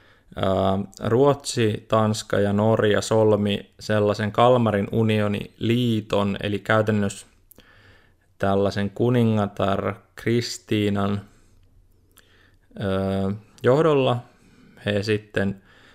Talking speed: 60 wpm